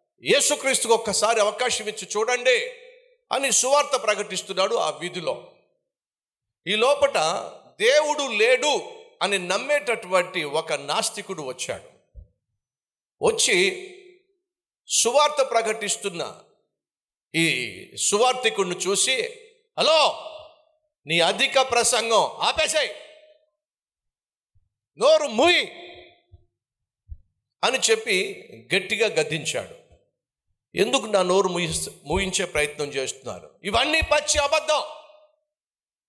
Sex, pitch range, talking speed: male, 190-315 Hz, 75 wpm